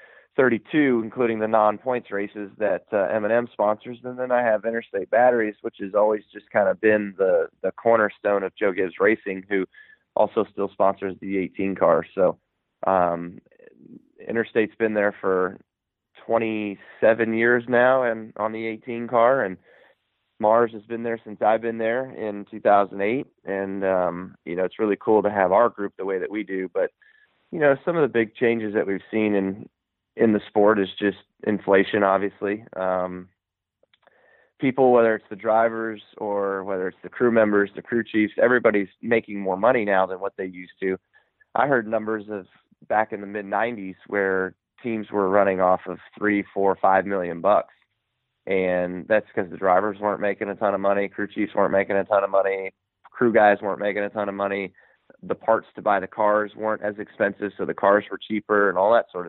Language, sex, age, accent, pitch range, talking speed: English, male, 20-39, American, 95-115 Hz, 190 wpm